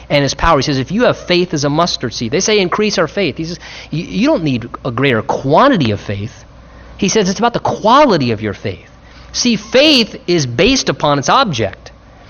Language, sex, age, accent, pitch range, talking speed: English, male, 30-49, American, 145-205 Hz, 215 wpm